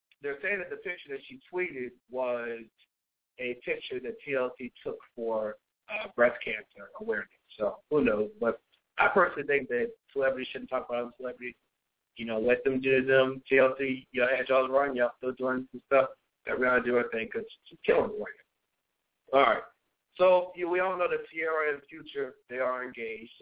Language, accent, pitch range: English, American, 125-195 Hz